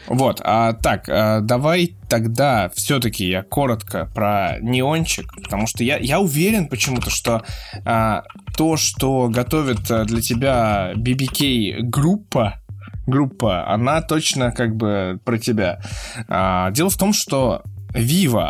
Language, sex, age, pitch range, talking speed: Russian, male, 20-39, 105-130 Hz, 125 wpm